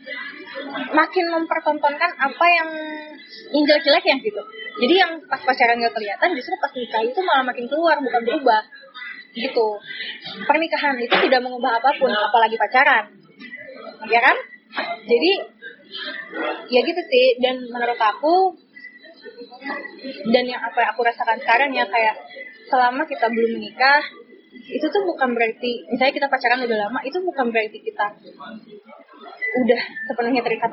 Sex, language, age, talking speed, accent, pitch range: female, Indonesian, 20-39, 135 wpm, native, 230-295 Hz